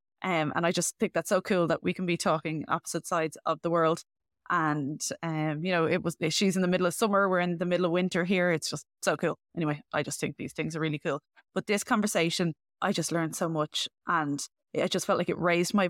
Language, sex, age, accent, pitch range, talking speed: English, female, 20-39, Irish, 165-195 Hz, 250 wpm